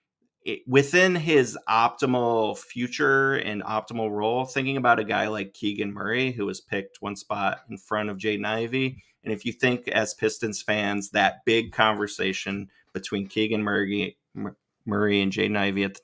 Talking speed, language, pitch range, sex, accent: 165 wpm, English, 100-125 Hz, male, American